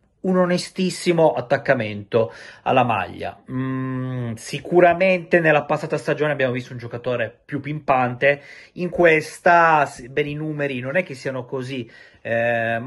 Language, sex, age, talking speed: Italian, male, 30-49, 125 wpm